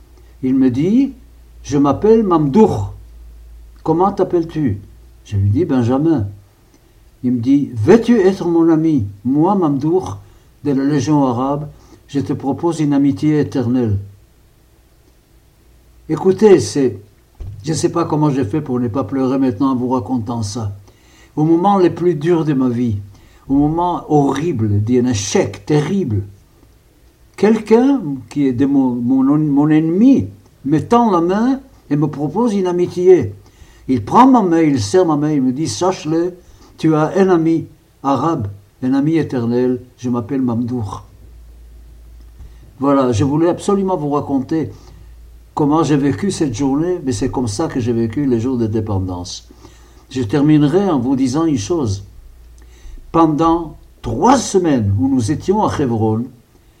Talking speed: 155 wpm